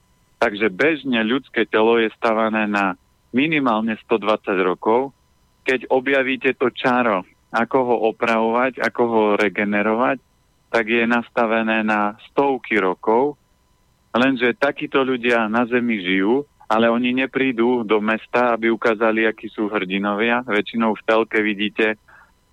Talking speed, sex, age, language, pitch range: 125 wpm, male, 40-59, Slovak, 110-135 Hz